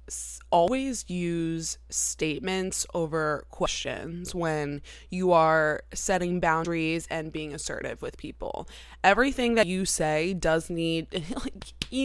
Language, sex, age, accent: English, female, 20-39, American